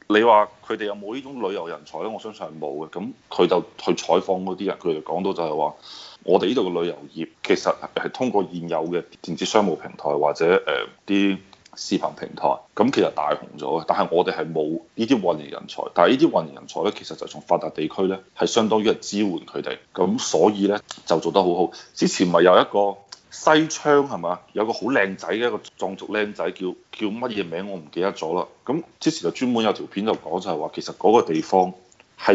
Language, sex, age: Chinese, male, 30-49